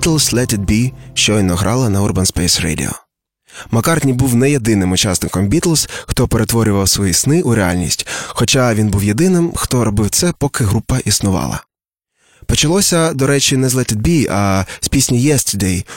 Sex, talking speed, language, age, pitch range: male, 165 wpm, Ukrainian, 20-39, 100-130 Hz